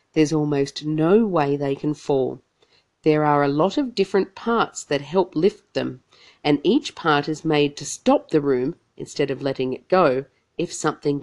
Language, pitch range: English, 140-195 Hz